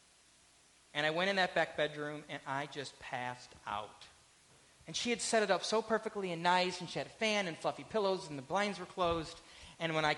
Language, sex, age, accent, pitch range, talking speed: English, male, 30-49, American, 145-195 Hz, 225 wpm